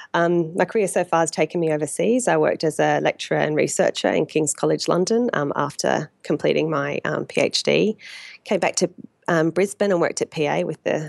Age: 20-39